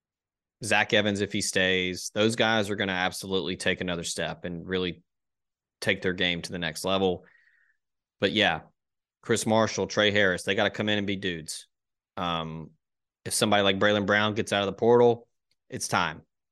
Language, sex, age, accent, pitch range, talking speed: English, male, 20-39, American, 95-120 Hz, 180 wpm